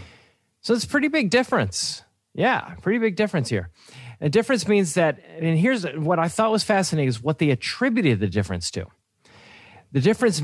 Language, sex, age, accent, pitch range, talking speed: English, male, 40-59, American, 115-165 Hz, 180 wpm